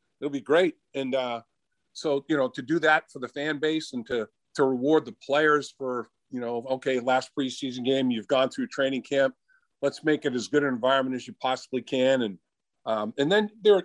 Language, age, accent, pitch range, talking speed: English, 50-69, American, 120-145 Hz, 210 wpm